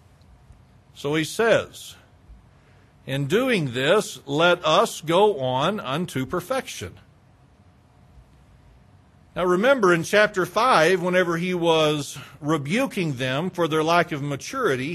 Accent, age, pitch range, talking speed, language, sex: American, 50-69, 140-195 Hz, 110 wpm, English, male